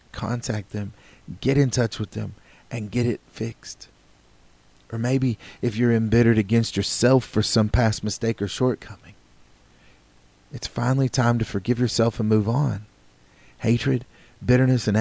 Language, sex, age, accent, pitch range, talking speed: English, male, 30-49, American, 100-120 Hz, 145 wpm